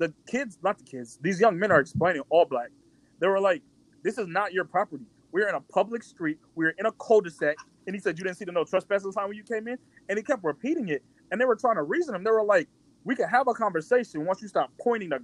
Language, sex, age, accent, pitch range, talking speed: English, male, 20-39, American, 150-225 Hz, 270 wpm